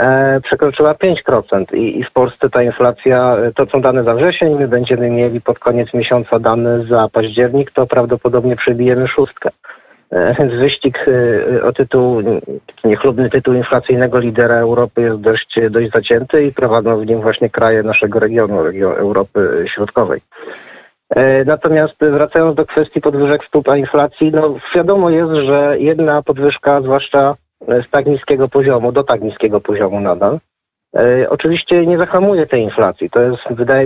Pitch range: 120-140 Hz